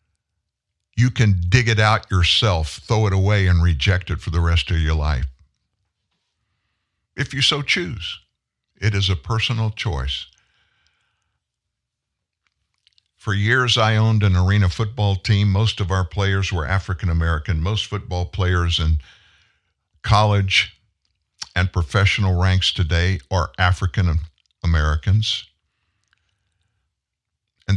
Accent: American